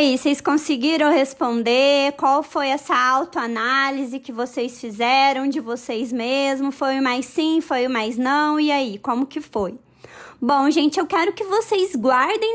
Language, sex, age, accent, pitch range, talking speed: Portuguese, female, 20-39, Brazilian, 270-375 Hz, 165 wpm